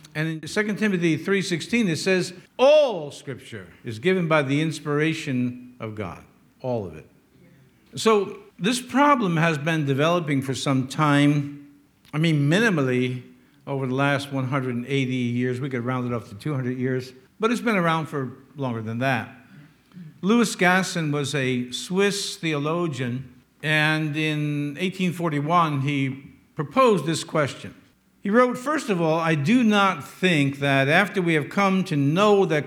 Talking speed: 150 wpm